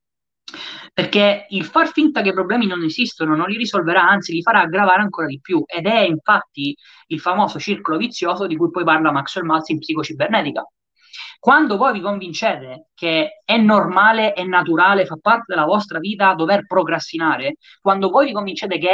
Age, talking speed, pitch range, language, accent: 20-39, 175 wpm, 165-240 Hz, Italian, native